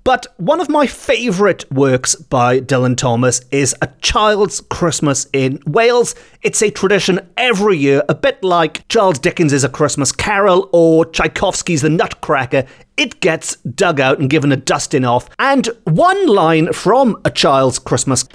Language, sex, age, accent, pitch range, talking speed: English, male, 40-59, British, 140-210 Hz, 155 wpm